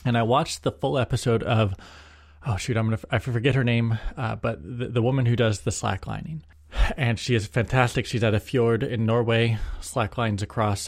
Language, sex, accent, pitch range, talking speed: English, male, American, 105-130 Hz, 200 wpm